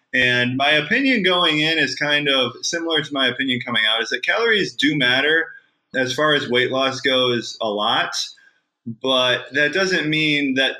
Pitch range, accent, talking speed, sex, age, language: 120-150 Hz, American, 180 wpm, male, 20-39, English